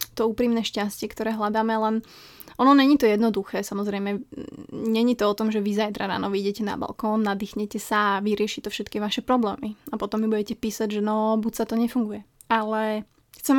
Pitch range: 215-235 Hz